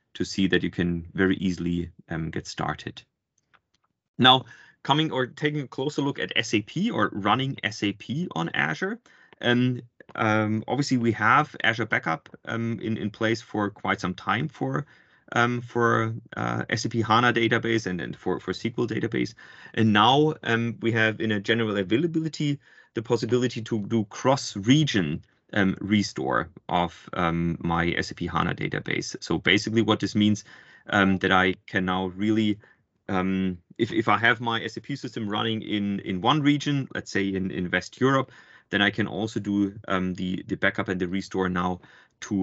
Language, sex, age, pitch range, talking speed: English, male, 30-49, 95-120 Hz, 165 wpm